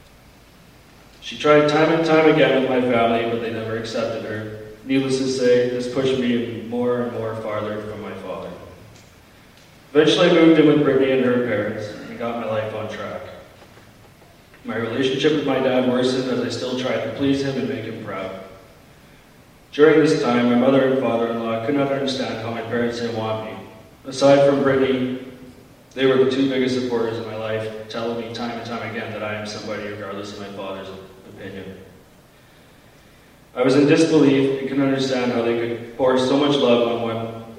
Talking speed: 190 wpm